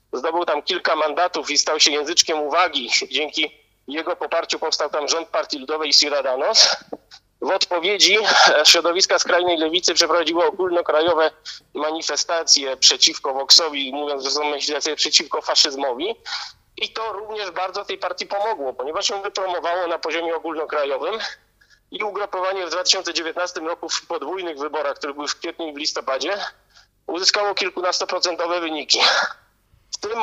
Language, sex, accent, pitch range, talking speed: Polish, male, native, 155-190 Hz, 135 wpm